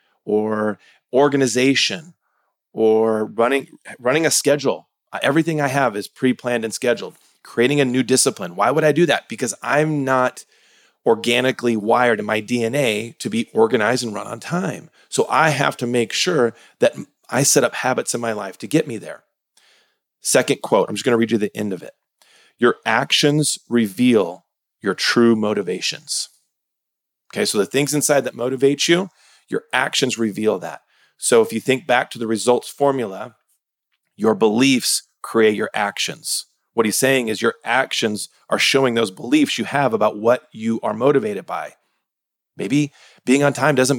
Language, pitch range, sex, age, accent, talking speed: English, 115-145 Hz, male, 30-49, American, 165 wpm